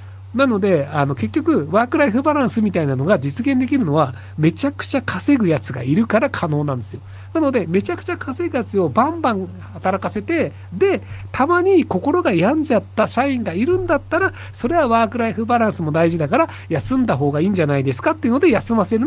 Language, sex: Japanese, male